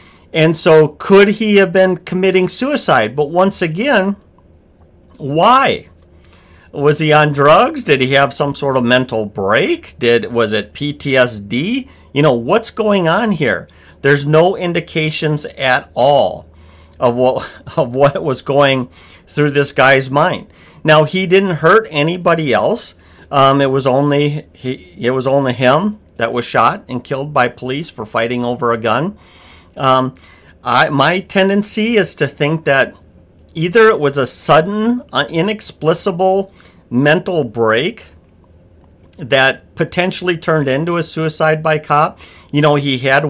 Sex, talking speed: male, 145 wpm